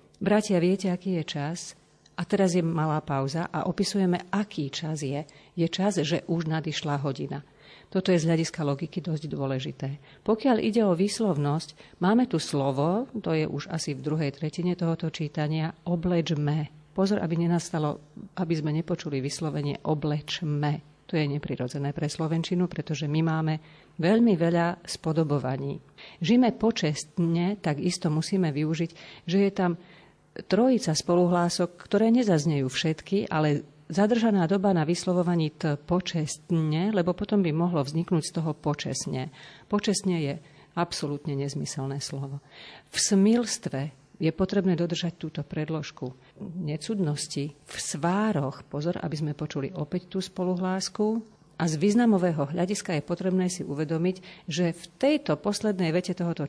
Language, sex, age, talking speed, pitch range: Slovak, female, 40-59, 135 wpm, 150-185 Hz